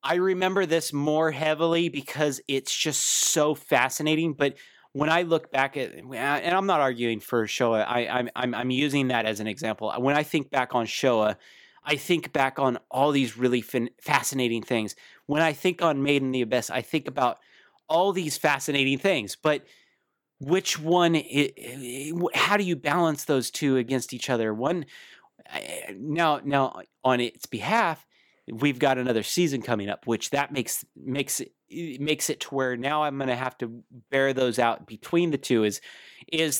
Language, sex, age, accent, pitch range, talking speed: English, male, 30-49, American, 120-150 Hz, 175 wpm